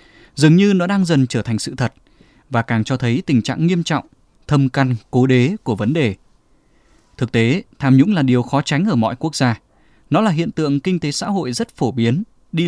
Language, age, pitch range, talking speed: Vietnamese, 20-39, 125-170 Hz, 225 wpm